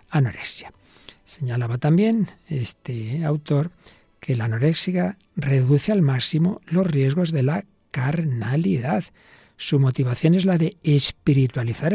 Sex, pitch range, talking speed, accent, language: male, 130-165 Hz, 110 wpm, Spanish, Spanish